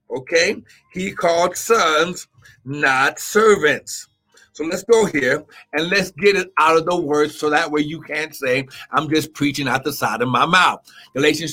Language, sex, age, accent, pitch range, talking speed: English, male, 50-69, American, 155-215 Hz, 175 wpm